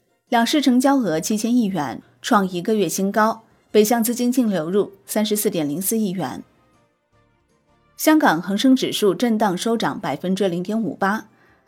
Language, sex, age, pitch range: Chinese, female, 30-49, 185-245 Hz